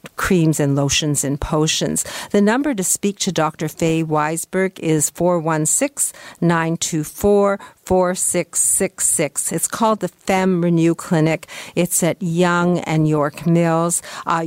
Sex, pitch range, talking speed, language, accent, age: female, 160-205 Hz, 115 wpm, English, American, 50-69